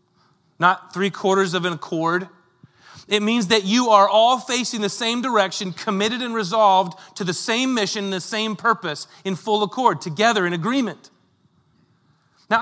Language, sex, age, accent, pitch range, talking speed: English, male, 30-49, American, 150-210 Hz, 155 wpm